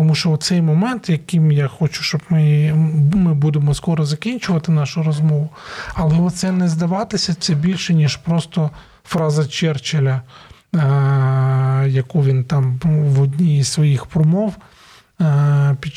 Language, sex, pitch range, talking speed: Ukrainian, male, 140-165 Hz, 130 wpm